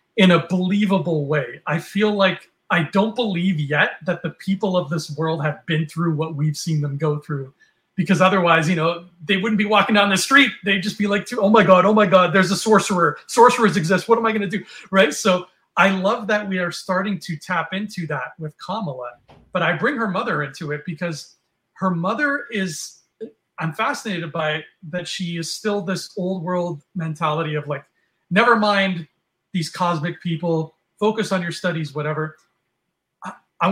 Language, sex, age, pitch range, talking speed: English, male, 30-49, 165-205 Hz, 195 wpm